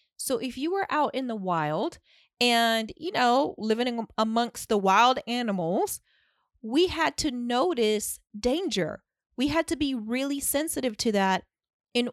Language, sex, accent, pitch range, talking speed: English, female, American, 200-280 Hz, 150 wpm